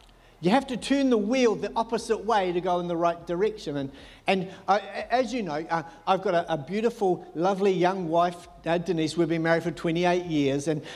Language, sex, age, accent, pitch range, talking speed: English, male, 50-69, Australian, 170-235 Hz, 215 wpm